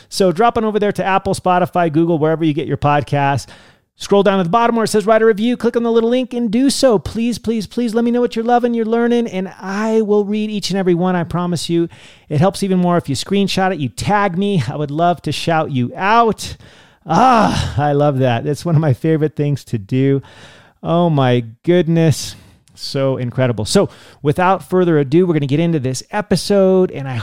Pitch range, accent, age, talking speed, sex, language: 140-200 Hz, American, 40-59, 225 wpm, male, English